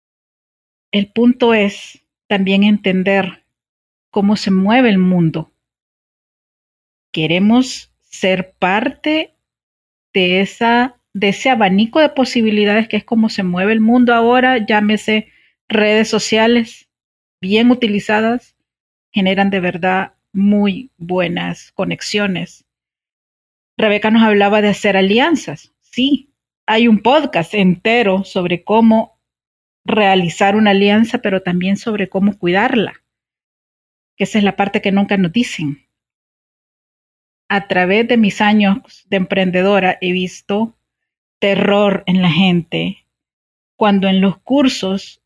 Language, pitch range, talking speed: Spanish, 190-225 Hz, 110 wpm